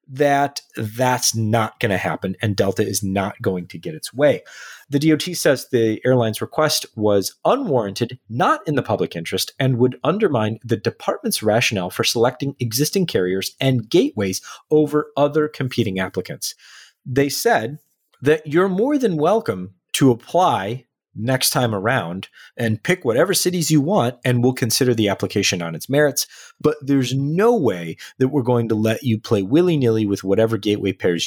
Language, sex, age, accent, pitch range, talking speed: English, male, 30-49, American, 100-145 Hz, 165 wpm